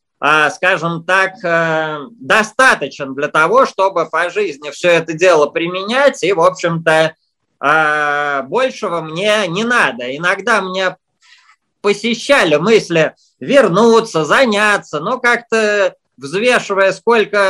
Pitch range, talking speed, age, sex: 155-200 Hz, 100 wpm, 20-39, male